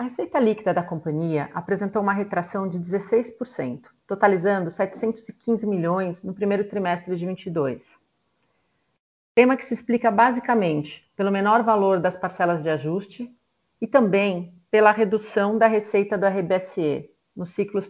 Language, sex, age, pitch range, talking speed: Portuguese, female, 40-59, 180-220 Hz, 135 wpm